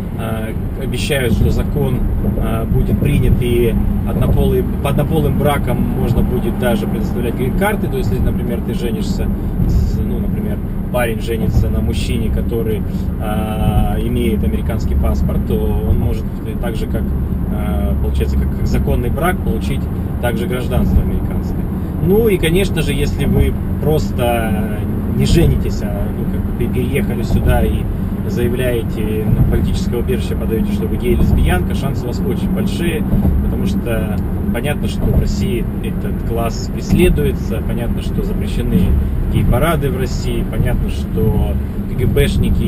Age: 20-39